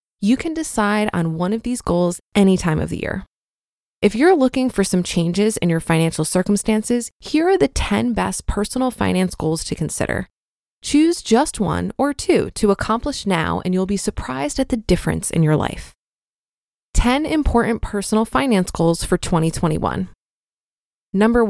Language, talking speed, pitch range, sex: English, 165 wpm, 175-235 Hz, female